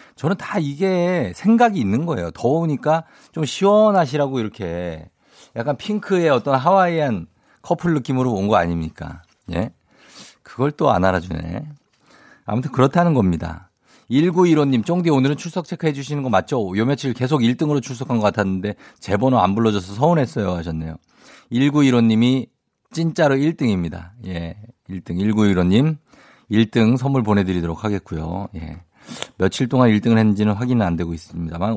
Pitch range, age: 90-140 Hz, 50-69